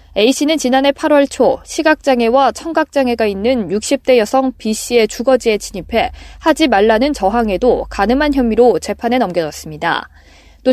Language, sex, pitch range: Korean, female, 215-275 Hz